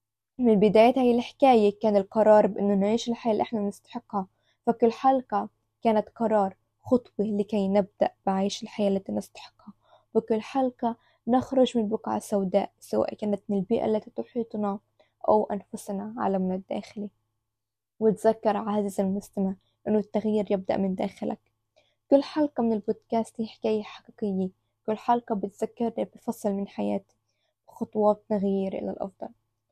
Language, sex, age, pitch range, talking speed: Arabic, female, 20-39, 200-230 Hz, 130 wpm